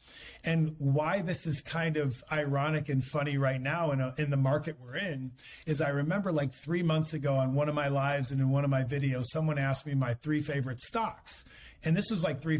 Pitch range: 135-155 Hz